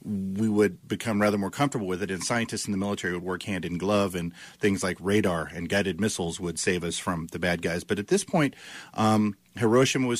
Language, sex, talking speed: English, male, 220 wpm